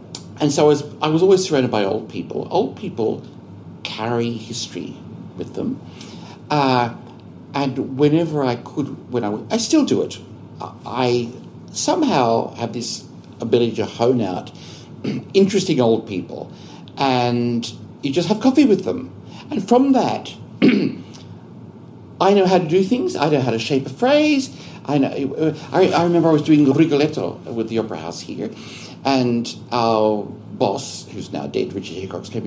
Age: 60-79